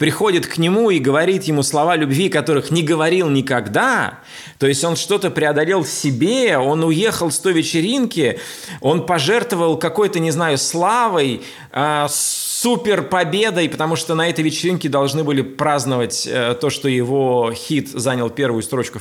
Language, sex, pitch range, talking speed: Russian, male, 130-170 Hz, 155 wpm